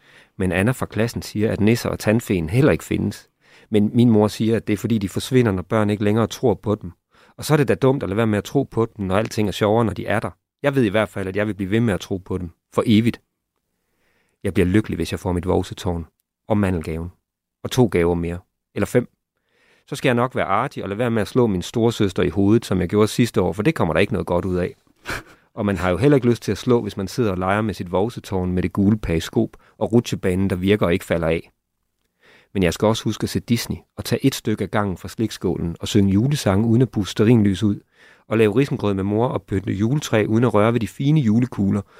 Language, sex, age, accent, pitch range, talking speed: Danish, male, 30-49, native, 95-115 Hz, 260 wpm